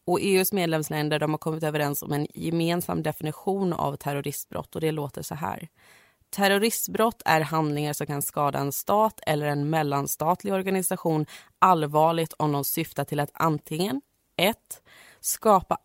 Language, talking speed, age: Swedish, 150 wpm, 30-49